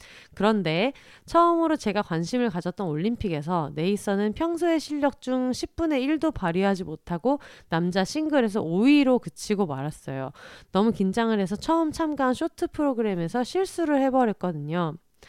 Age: 30-49